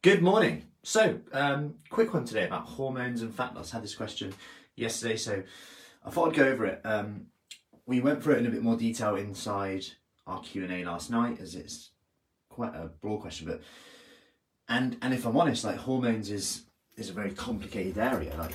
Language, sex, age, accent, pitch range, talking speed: English, male, 30-49, British, 95-125 Hz, 200 wpm